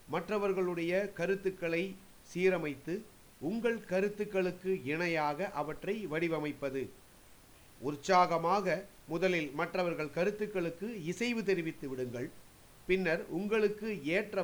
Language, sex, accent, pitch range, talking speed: Tamil, male, native, 145-190 Hz, 75 wpm